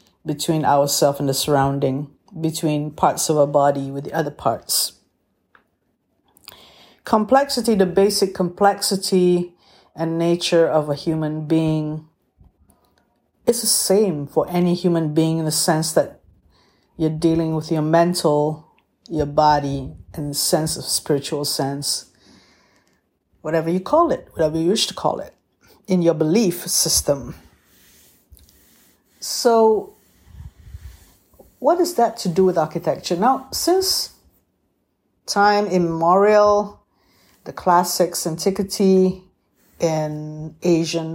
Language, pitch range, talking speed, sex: English, 150-185 Hz, 115 wpm, female